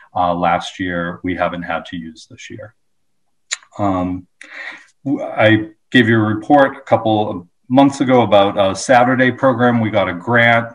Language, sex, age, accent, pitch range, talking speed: English, male, 40-59, American, 90-115 Hz, 160 wpm